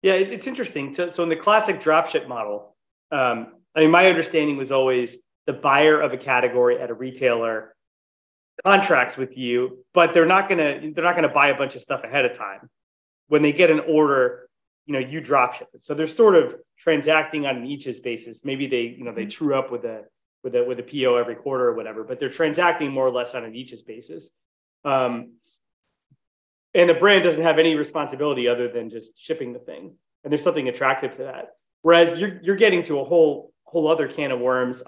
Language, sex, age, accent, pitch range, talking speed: English, male, 30-49, American, 120-160 Hz, 210 wpm